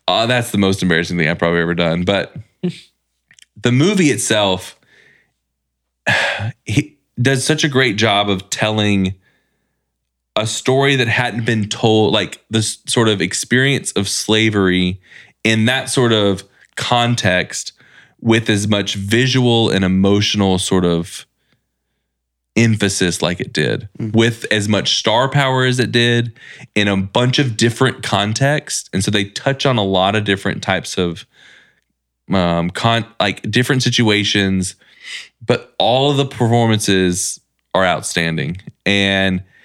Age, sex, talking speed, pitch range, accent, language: 20-39, male, 135 wpm, 95-120 Hz, American, English